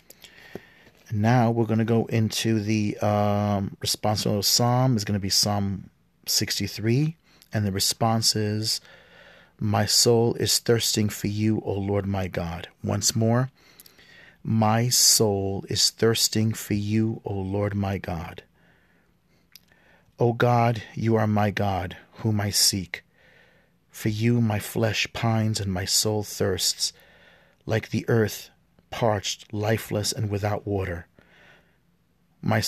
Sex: male